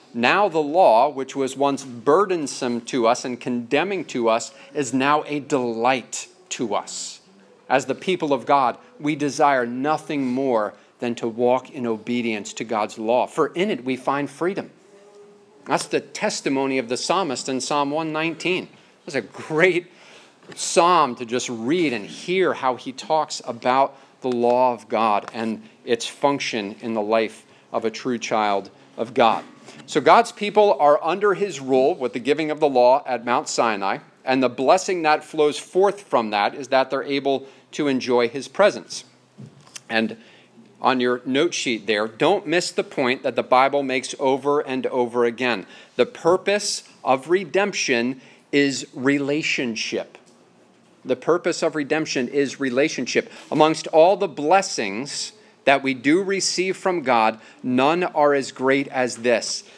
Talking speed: 160 wpm